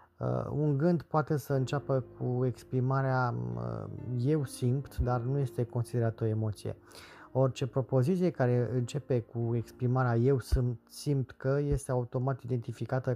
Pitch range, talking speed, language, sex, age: 115-135 Hz, 135 wpm, Romanian, male, 20-39